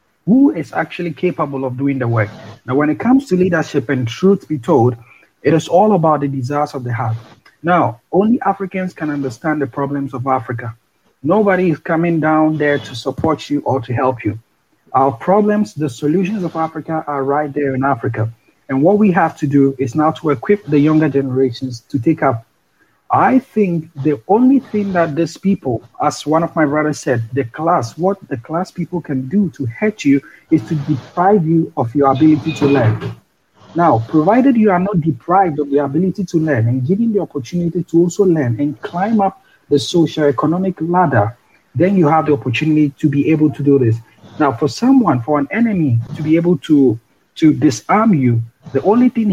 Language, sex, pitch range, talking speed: English, male, 135-175 Hz, 195 wpm